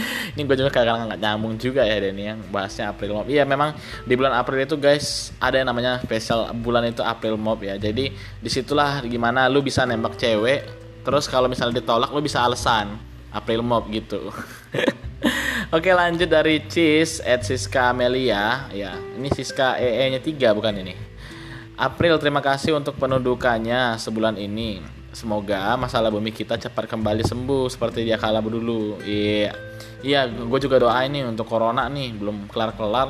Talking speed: 165 wpm